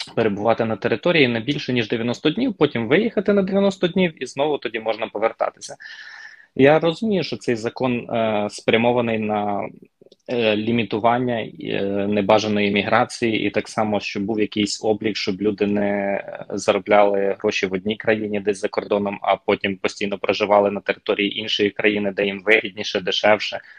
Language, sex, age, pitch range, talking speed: Ukrainian, male, 20-39, 100-120 Hz, 155 wpm